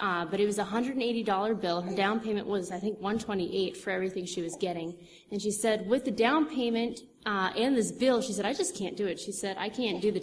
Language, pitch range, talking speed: English, 190-225 Hz, 250 wpm